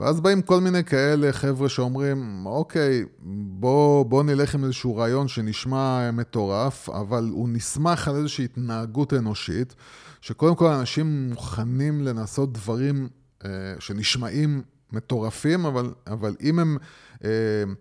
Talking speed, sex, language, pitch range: 125 wpm, male, Hebrew, 120-150 Hz